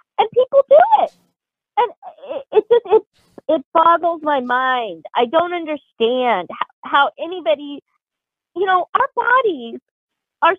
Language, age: English, 30-49